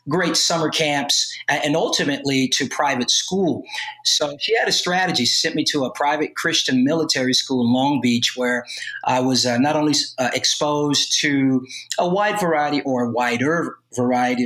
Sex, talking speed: male, 165 wpm